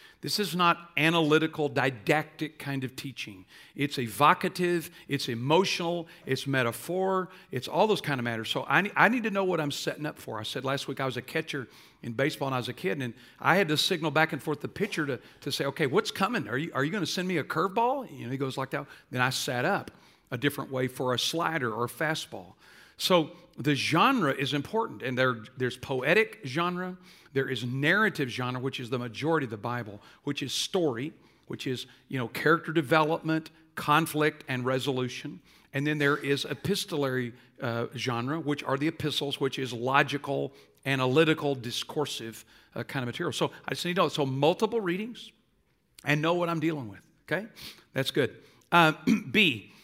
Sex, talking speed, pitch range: male, 200 wpm, 130-165 Hz